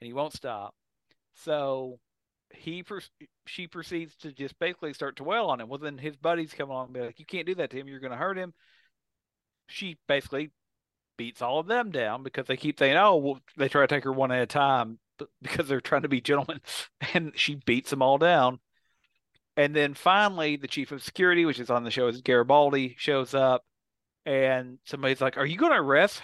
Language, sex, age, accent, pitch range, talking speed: English, male, 40-59, American, 130-175 Hz, 215 wpm